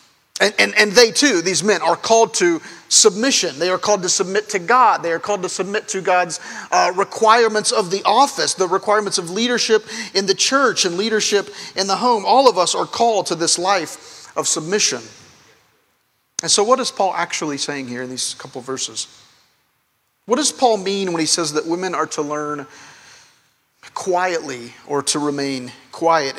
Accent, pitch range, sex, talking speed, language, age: American, 155-225 Hz, male, 185 wpm, English, 40-59